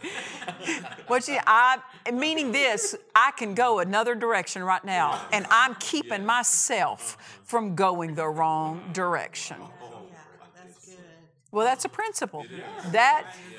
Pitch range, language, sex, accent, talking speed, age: 190-260 Hz, English, female, American, 115 wpm, 50-69